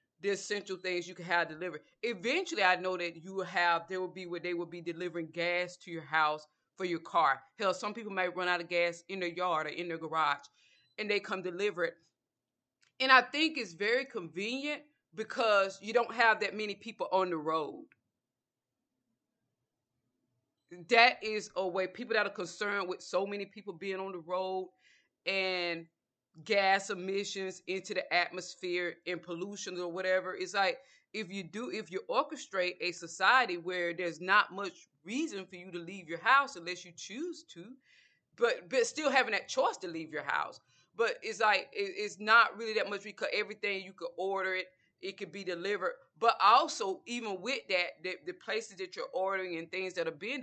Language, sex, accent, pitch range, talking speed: English, female, American, 175-215 Hz, 190 wpm